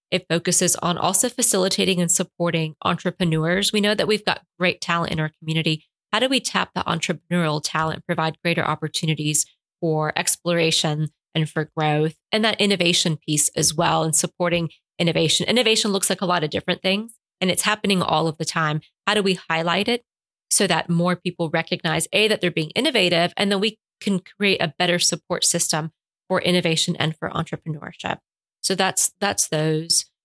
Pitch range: 160-185 Hz